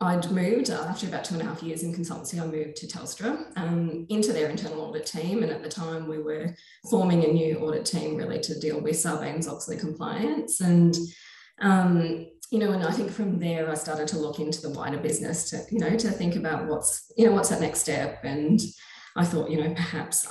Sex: female